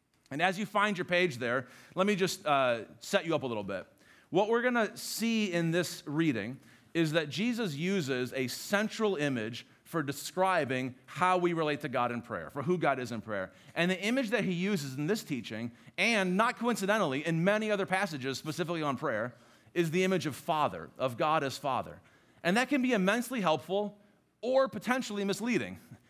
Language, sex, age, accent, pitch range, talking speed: English, male, 40-59, American, 135-200 Hz, 190 wpm